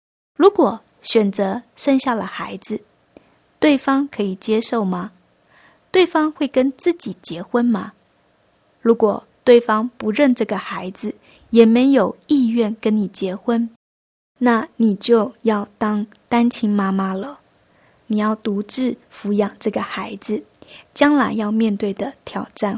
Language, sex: Chinese, female